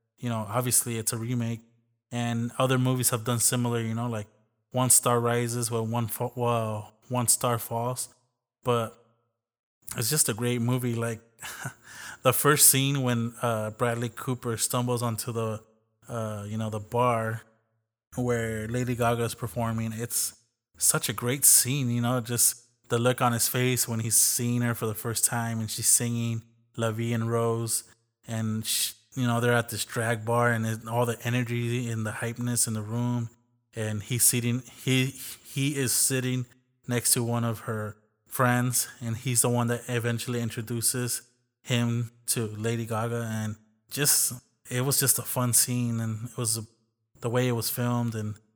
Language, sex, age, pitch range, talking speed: English, male, 20-39, 115-125 Hz, 170 wpm